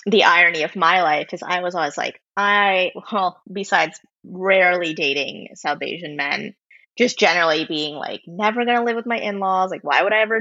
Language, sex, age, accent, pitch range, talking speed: English, female, 20-39, American, 170-220 Hz, 195 wpm